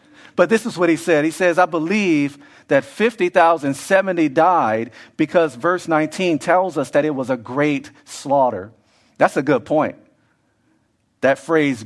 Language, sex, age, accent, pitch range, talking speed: English, male, 40-59, American, 130-180 Hz, 150 wpm